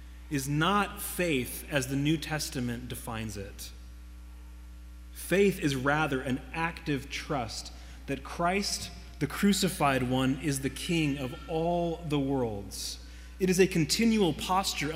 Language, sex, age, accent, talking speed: English, male, 30-49, American, 130 wpm